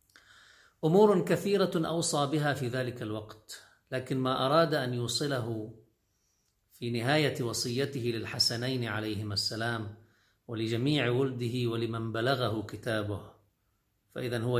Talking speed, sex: 105 wpm, male